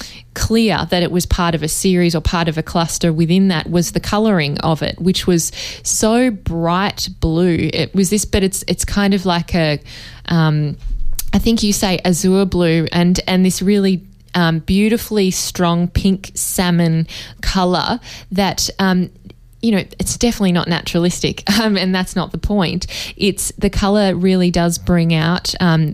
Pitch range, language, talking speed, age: 160-185 Hz, English, 170 wpm, 10-29